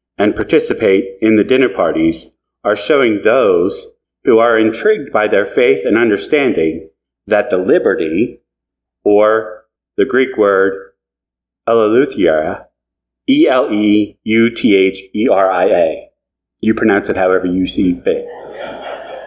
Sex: male